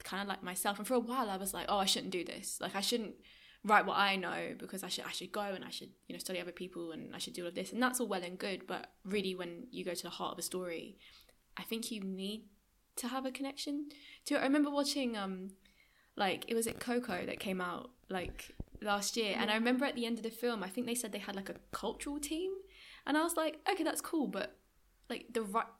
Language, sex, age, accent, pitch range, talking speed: English, female, 10-29, British, 190-240 Hz, 270 wpm